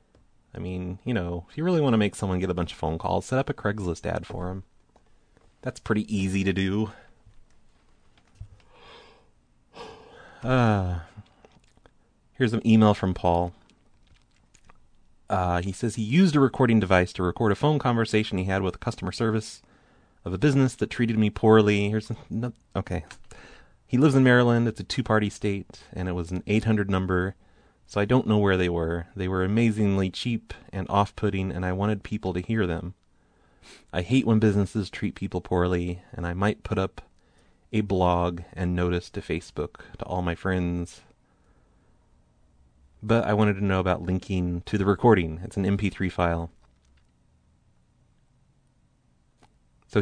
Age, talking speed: 30-49, 160 wpm